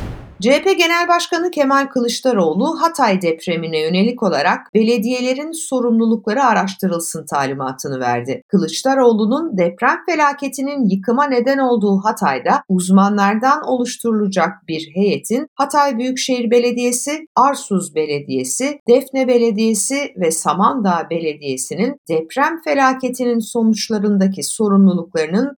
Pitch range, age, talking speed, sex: 190-275 Hz, 60-79, 90 wpm, female